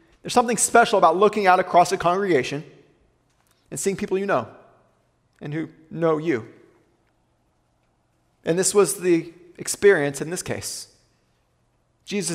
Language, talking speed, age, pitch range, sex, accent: English, 130 wpm, 30-49, 140-220 Hz, male, American